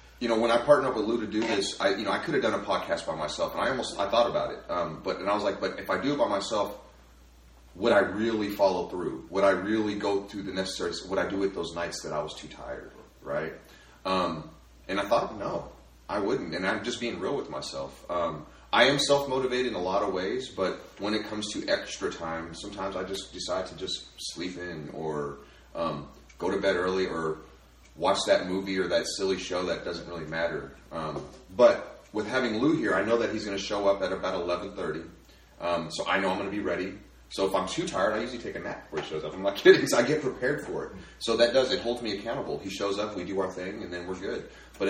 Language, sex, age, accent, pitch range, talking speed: English, male, 30-49, American, 80-105 Hz, 255 wpm